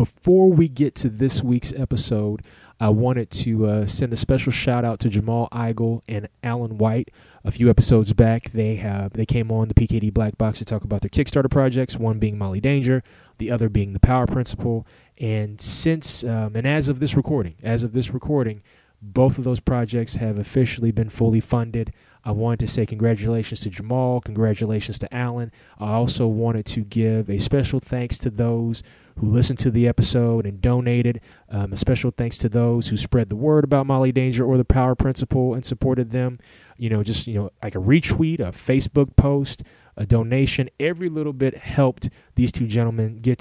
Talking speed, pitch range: 195 wpm, 110-130 Hz